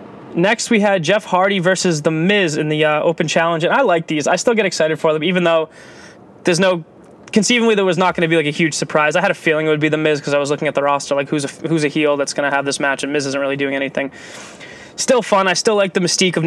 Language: English